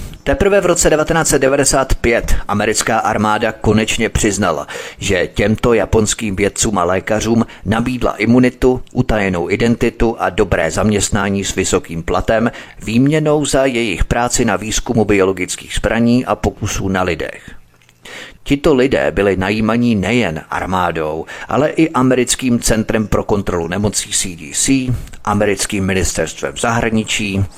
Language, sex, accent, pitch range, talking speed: Czech, male, native, 95-120 Hz, 115 wpm